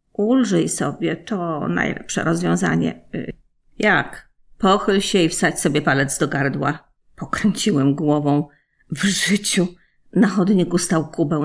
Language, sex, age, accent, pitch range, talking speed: Polish, female, 40-59, native, 155-200 Hz, 115 wpm